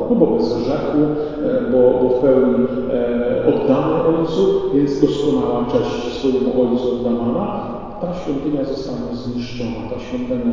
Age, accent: 40-59, native